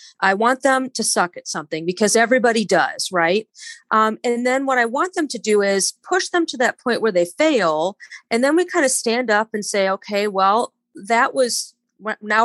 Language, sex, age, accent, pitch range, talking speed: English, female, 30-49, American, 190-245 Hz, 205 wpm